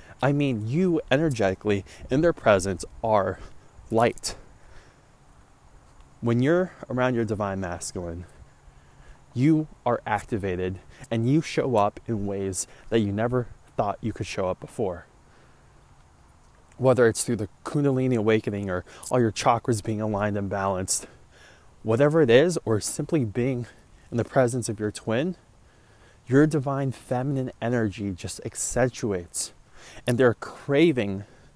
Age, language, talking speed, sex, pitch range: 20-39, English, 130 wpm, male, 100-135 Hz